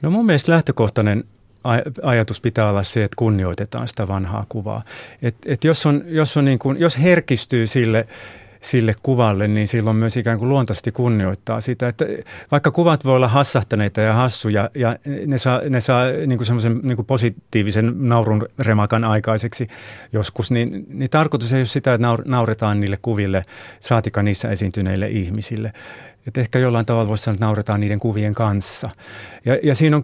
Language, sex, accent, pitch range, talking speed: Finnish, male, native, 110-140 Hz, 160 wpm